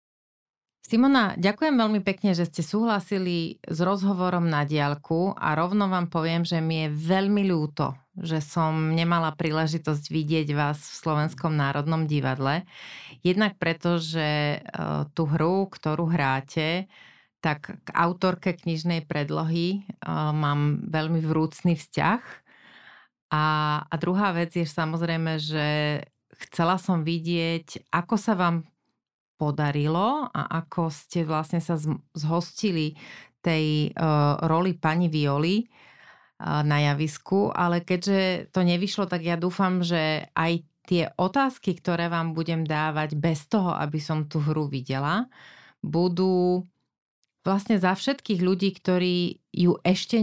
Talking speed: 125 wpm